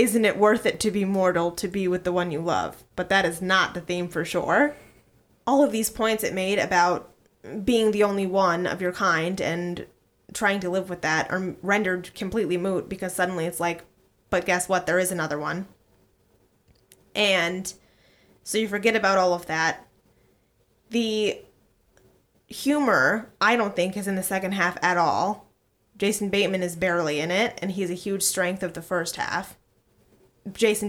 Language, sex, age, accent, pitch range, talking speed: English, female, 20-39, American, 170-200 Hz, 180 wpm